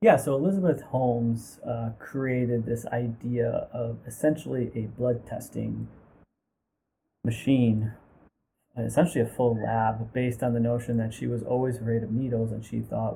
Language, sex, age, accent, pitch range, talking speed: English, male, 30-49, American, 110-125 Hz, 145 wpm